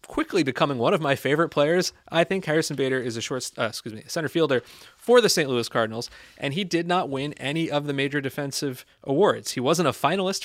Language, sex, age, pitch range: English, male, 30-49, 120-155 Hz